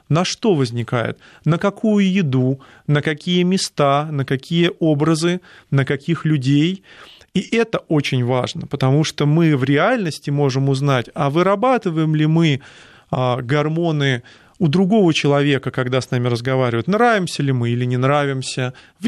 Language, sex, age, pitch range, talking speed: Russian, male, 30-49, 135-185 Hz, 140 wpm